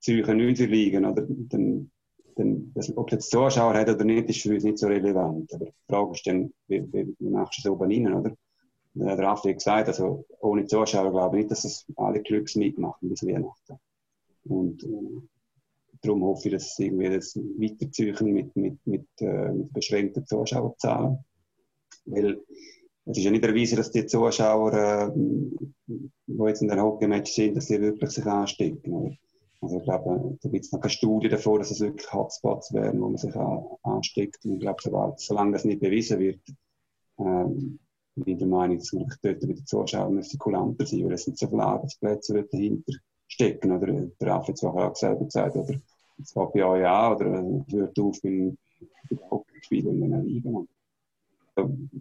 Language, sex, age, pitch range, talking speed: German, male, 30-49, 100-115 Hz, 195 wpm